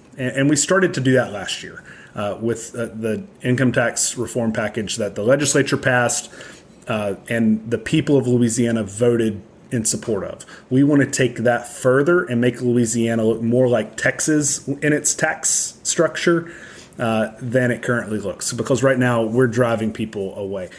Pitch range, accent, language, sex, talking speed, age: 115-140 Hz, American, English, male, 165 wpm, 30-49